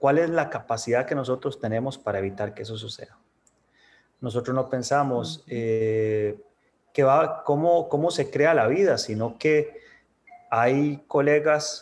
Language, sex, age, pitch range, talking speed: Spanish, male, 30-49, 125-155 Hz, 140 wpm